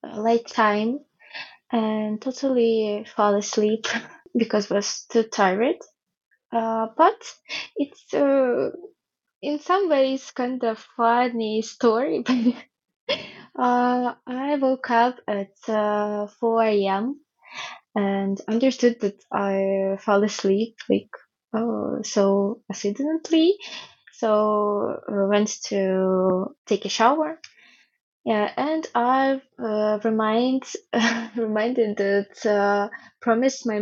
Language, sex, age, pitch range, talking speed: English, female, 20-39, 210-260 Hz, 105 wpm